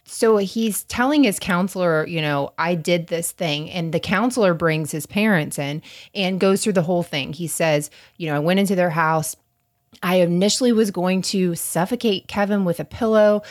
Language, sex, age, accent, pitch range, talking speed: English, female, 20-39, American, 155-200 Hz, 190 wpm